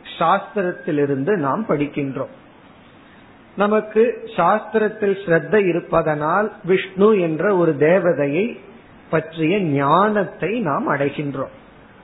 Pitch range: 150-200 Hz